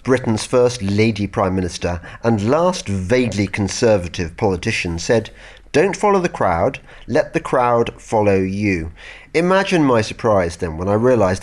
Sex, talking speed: male, 140 wpm